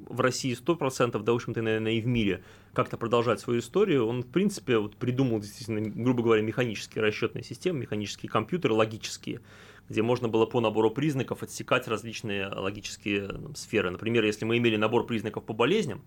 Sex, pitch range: male, 105-130 Hz